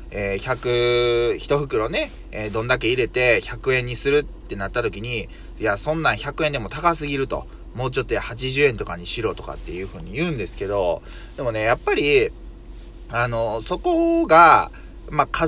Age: 20-39